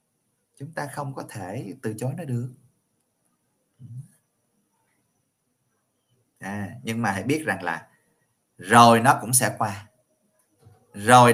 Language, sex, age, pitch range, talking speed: Vietnamese, male, 20-39, 105-130 Hz, 110 wpm